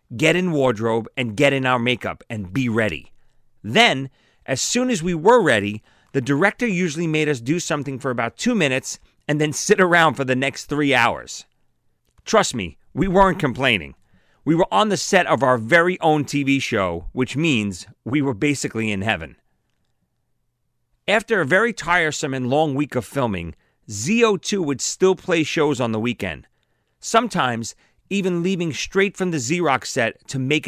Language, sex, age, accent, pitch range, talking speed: English, male, 40-59, American, 115-170 Hz, 175 wpm